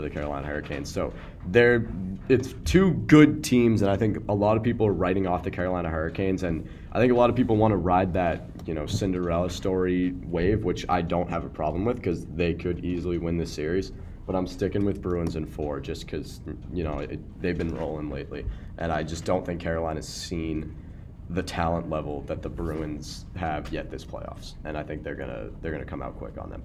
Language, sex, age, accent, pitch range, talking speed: English, male, 20-39, American, 80-100 Hz, 215 wpm